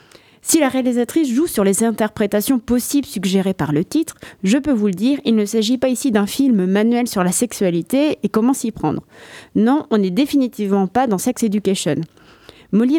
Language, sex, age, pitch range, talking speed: French, female, 30-49, 195-255 Hz, 190 wpm